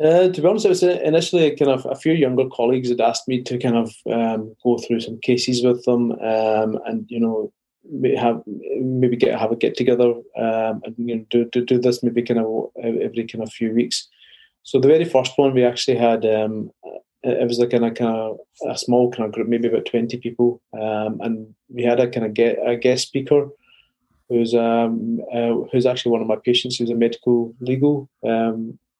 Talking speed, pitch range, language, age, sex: 210 wpm, 115-125 Hz, English, 20-39, male